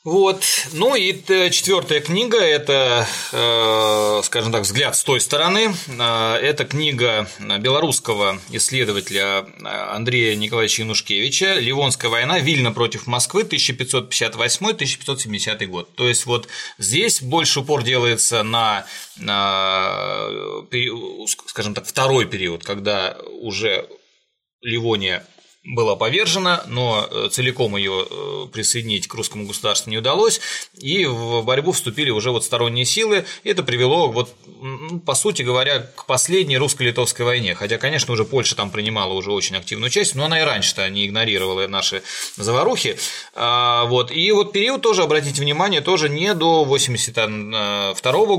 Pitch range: 110-160 Hz